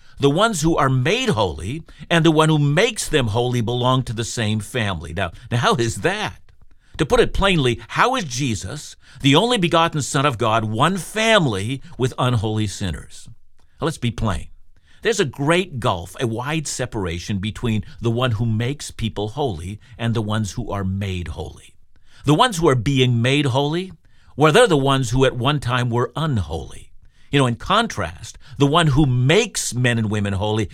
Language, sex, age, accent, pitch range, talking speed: English, male, 50-69, American, 105-145 Hz, 185 wpm